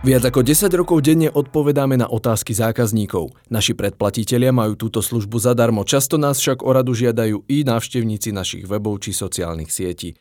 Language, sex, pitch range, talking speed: Slovak, male, 100-125 Hz, 160 wpm